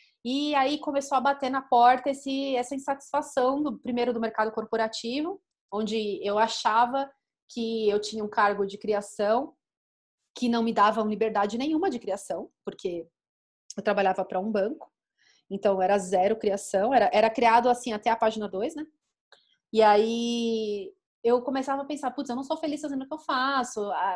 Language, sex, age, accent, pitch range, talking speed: Portuguese, female, 30-49, Brazilian, 210-265 Hz, 170 wpm